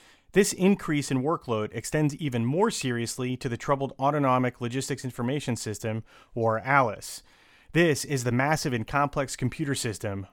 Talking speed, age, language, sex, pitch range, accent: 145 wpm, 30-49, English, male, 120-150 Hz, American